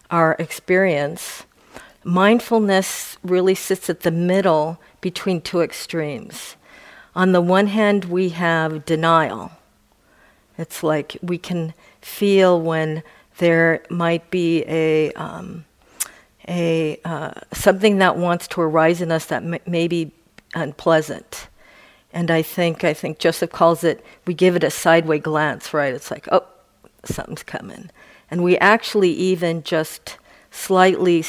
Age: 50-69